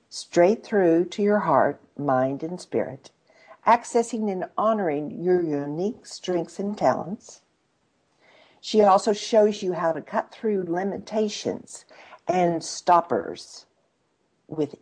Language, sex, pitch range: English, female, 160-220 Hz